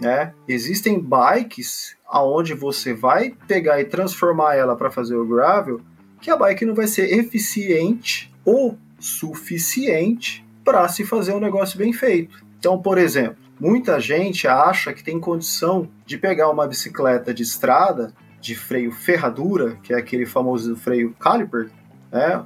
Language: English